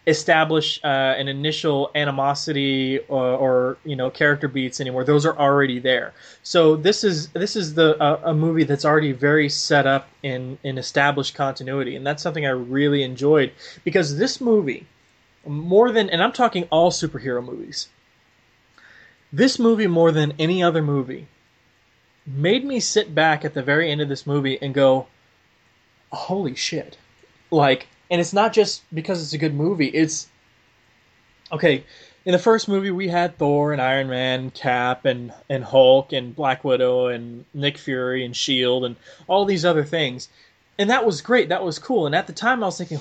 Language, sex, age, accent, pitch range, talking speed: English, male, 20-39, American, 135-175 Hz, 175 wpm